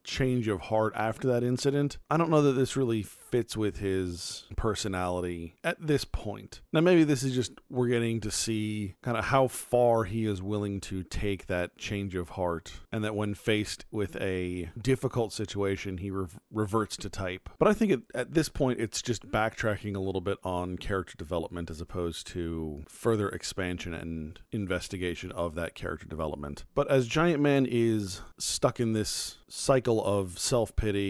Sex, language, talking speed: male, English, 175 wpm